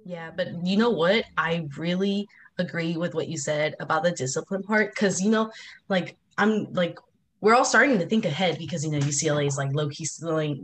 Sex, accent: female, American